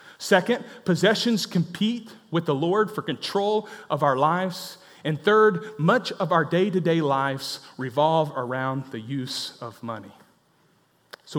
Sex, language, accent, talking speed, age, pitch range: male, English, American, 130 wpm, 30-49, 140-190 Hz